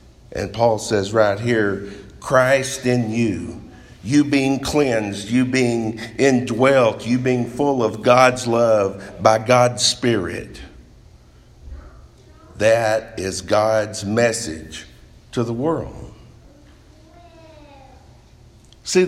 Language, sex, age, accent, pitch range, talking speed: English, male, 50-69, American, 100-125 Hz, 100 wpm